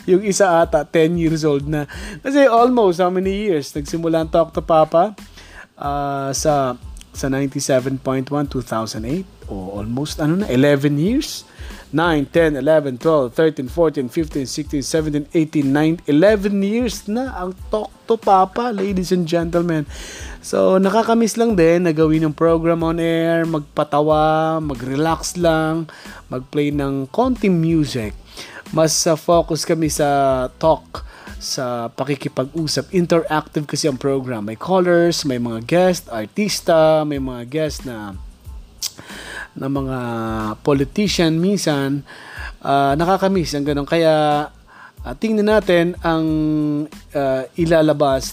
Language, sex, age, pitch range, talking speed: Filipino, male, 20-39, 135-170 Hz, 125 wpm